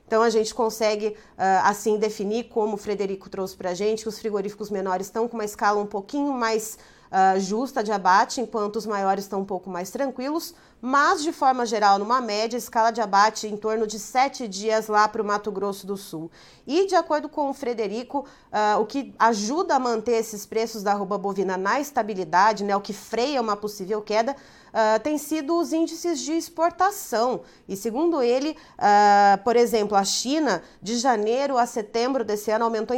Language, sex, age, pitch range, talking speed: Portuguese, female, 30-49, 205-255 Hz, 185 wpm